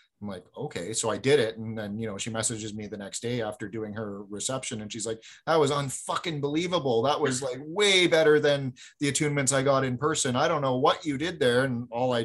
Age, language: 30-49, English